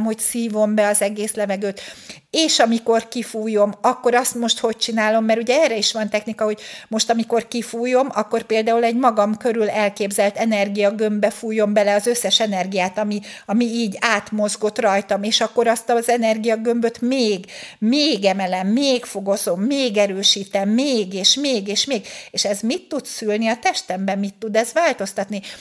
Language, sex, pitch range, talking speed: Hungarian, female, 200-240 Hz, 160 wpm